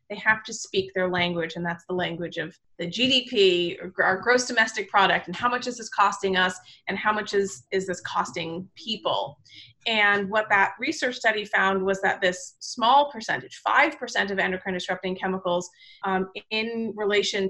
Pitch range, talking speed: 185-220 Hz, 175 wpm